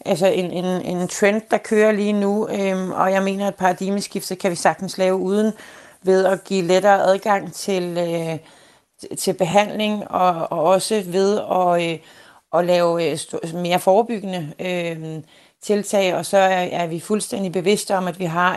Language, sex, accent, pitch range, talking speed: Danish, female, native, 170-195 Hz, 170 wpm